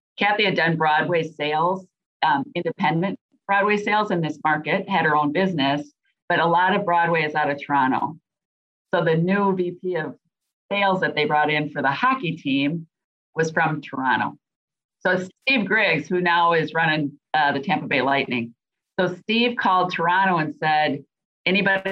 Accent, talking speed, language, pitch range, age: American, 165 wpm, English, 150-180 Hz, 50-69